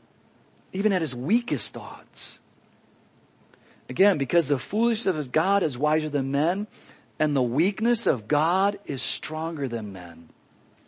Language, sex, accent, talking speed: English, male, American, 130 wpm